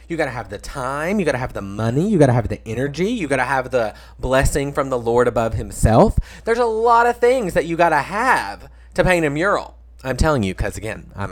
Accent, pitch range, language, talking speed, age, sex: American, 115-180 Hz, English, 235 wpm, 30-49, male